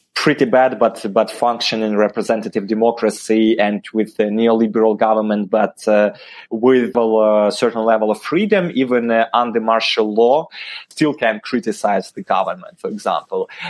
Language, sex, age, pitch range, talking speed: English, male, 20-39, 110-130 Hz, 140 wpm